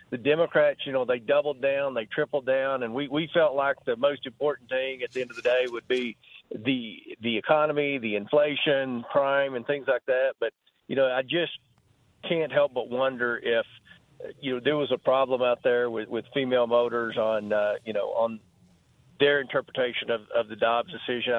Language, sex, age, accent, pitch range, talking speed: English, male, 40-59, American, 120-145 Hz, 200 wpm